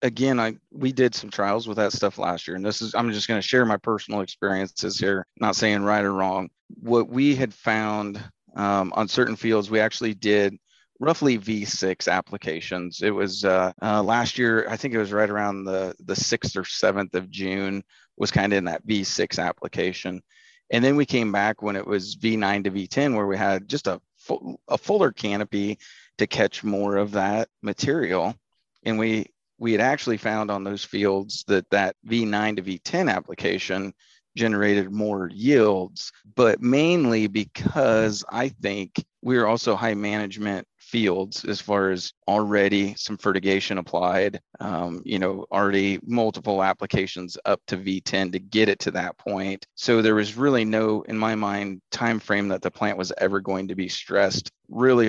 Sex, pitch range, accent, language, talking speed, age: male, 95-110 Hz, American, English, 180 wpm, 30-49